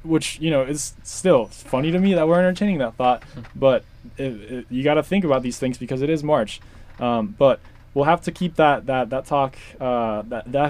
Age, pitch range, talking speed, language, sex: 20-39, 120-145 Hz, 225 wpm, English, male